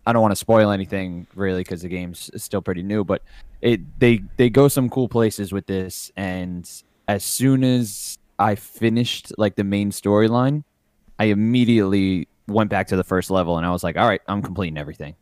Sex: male